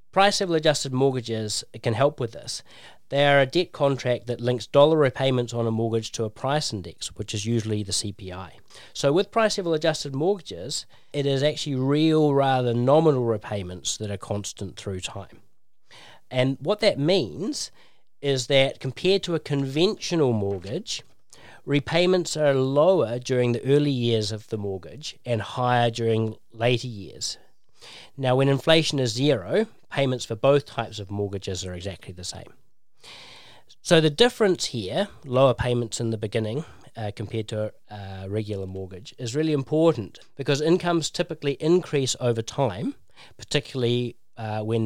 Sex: male